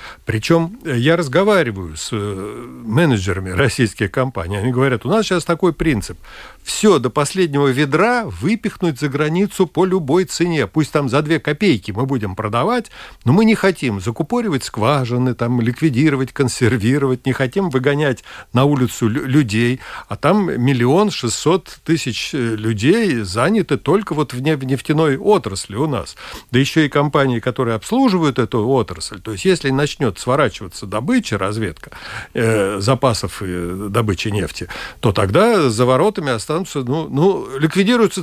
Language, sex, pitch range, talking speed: Russian, male, 115-170 Hz, 140 wpm